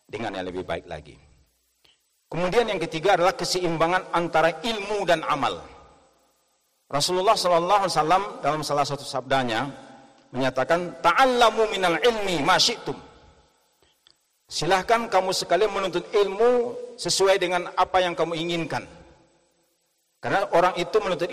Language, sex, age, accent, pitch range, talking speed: Indonesian, male, 50-69, native, 160-205 Hz, 105 wpm